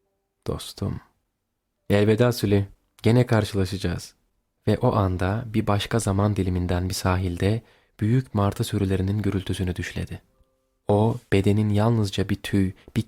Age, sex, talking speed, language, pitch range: 30-49, male, 115 wpm, Turkish, 95-125 Hz